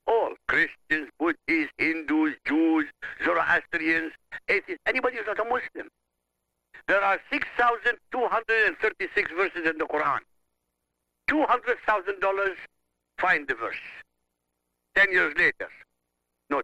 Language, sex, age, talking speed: English, male, 60-79, 95 wpm